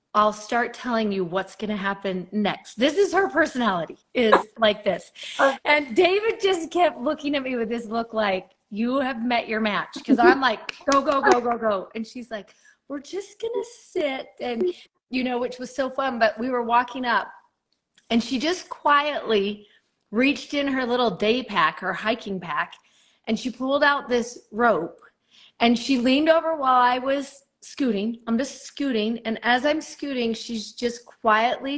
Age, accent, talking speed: 30-49, American, 185 wpm